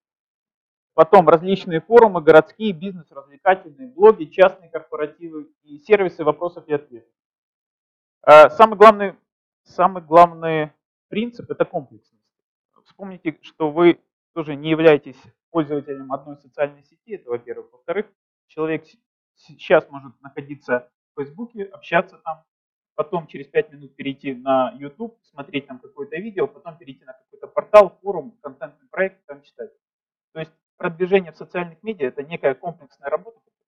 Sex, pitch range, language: male, 145-210 Hz, Russian